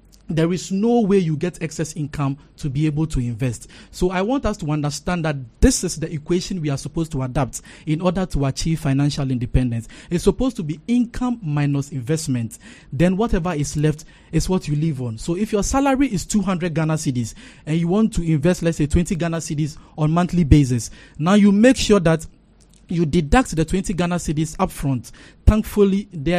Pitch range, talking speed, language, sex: 145-185 Hz, 200 wpm, English, male